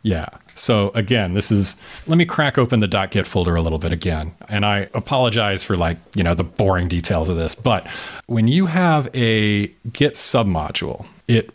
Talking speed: 185 wpm